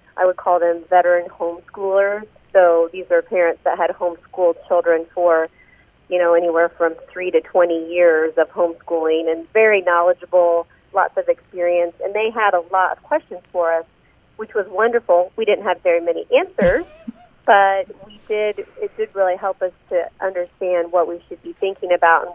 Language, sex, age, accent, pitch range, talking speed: English, female, 40-59, American, 175-210 Hz, 175 wpm